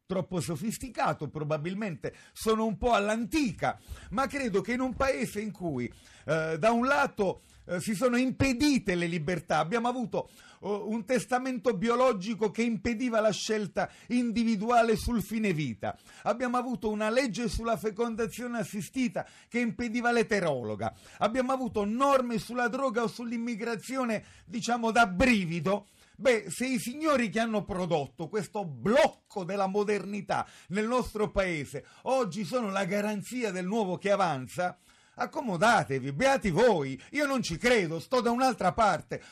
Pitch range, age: 185-245 Hz, 40-59